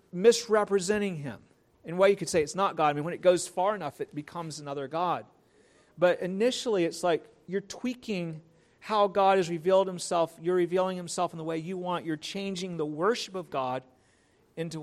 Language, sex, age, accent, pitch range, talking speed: English, male, 40-59, American, 150-185 Hz, 195 wpm